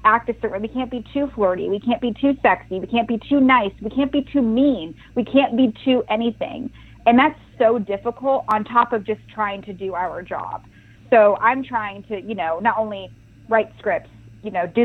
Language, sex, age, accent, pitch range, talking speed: English, female, 30-49, American, 185-235 Hz, 220 wpm